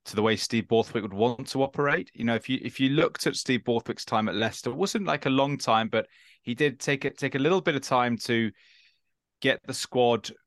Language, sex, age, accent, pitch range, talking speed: English, male, 20-39, British, 115-140 Hz, 245 wpm